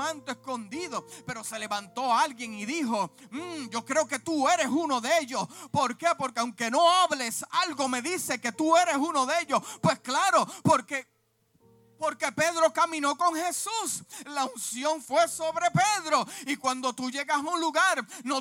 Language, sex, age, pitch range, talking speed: Spanish, male, 40-59, 260-330 Hz, 175 wpm